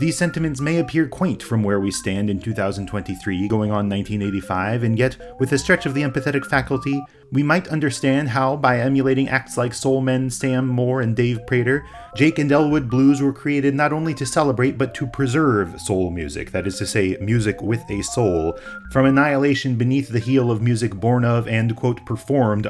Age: 30-49